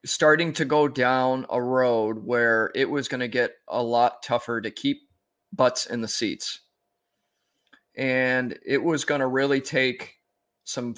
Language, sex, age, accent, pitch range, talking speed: English, male, 20-39, American, 120-140 Hz, 160 wpm